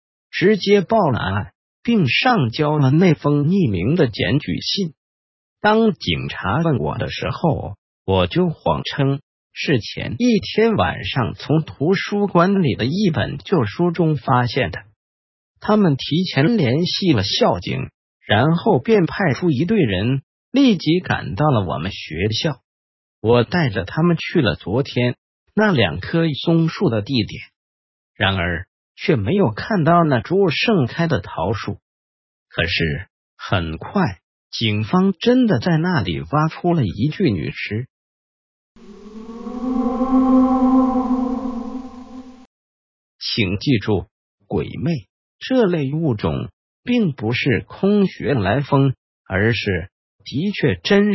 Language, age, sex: Chinese, 50-69, male